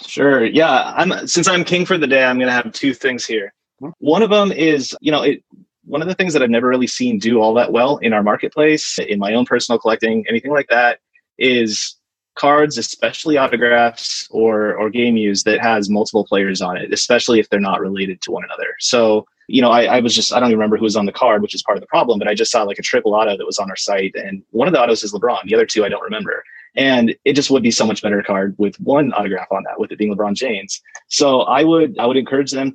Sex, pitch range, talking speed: male, 110-145 Hz, 260 wpm